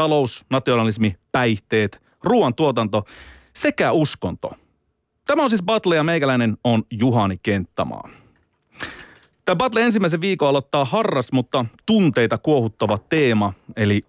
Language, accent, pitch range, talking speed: Finnish, native, 110-155 Hz, 110 wpm